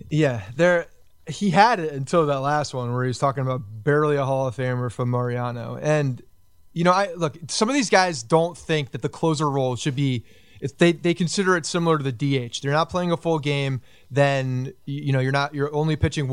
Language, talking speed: English, 225 wpm